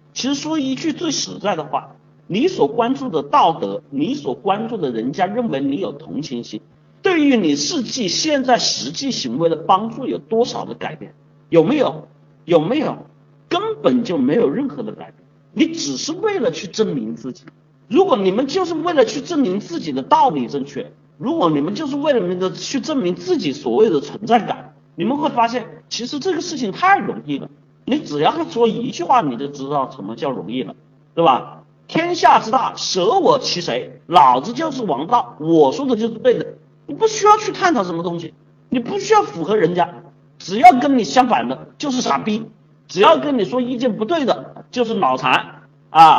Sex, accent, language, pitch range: male, native, Chinese, 190-315 Hz